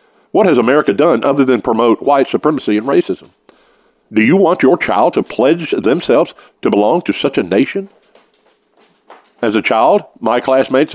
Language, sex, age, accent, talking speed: English, male, 50-69, American, 165 wpm